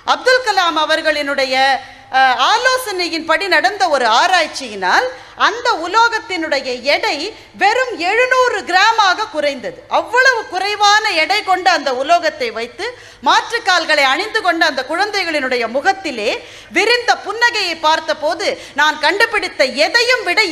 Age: 40-59